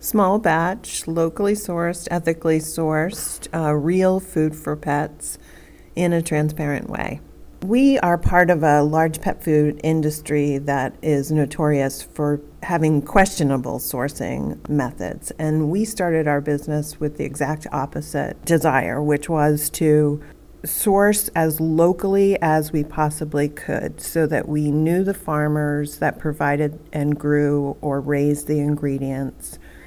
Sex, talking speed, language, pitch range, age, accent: female, 135 wpm, English, 150-165 Hz, 40-59, American